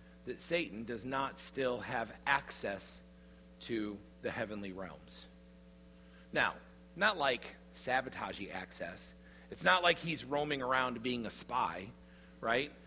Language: English